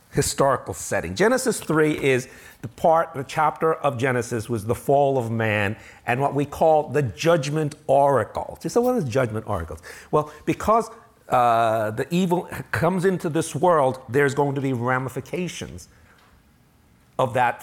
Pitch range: 135-215 Hz